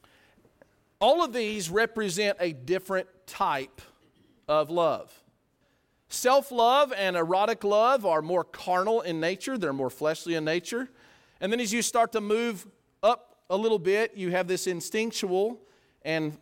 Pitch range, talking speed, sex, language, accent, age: 165-220 Hz, 145 wpm, male, English, American, 40-59